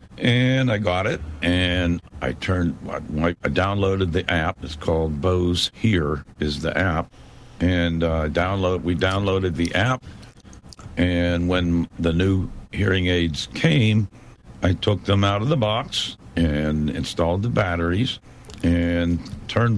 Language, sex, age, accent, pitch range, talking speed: English, male, 60-79, American, 85-105 Hz, 140 wpm